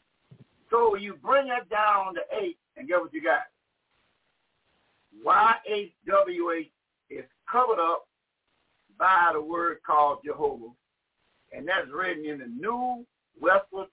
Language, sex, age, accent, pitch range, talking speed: English, male, 60-79, American, 185-285 Hz, 125 wpm